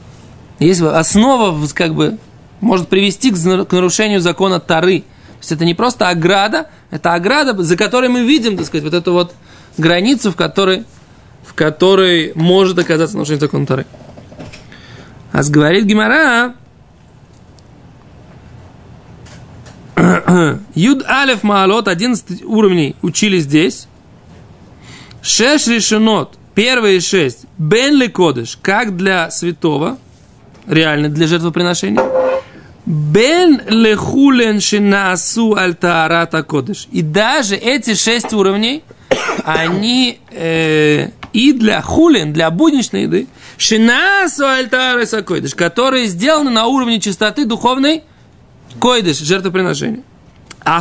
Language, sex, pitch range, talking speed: Russian, male, 165-230 Hz, 95 wpm